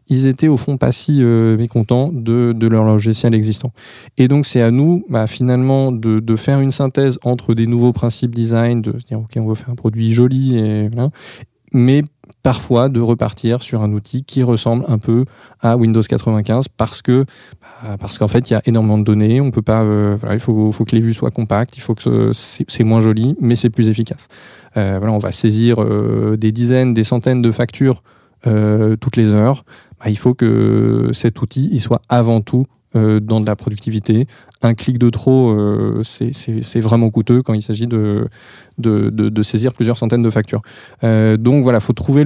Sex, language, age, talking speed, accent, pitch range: male, French, 20-39, 215 wpm, French, 110-125 Hz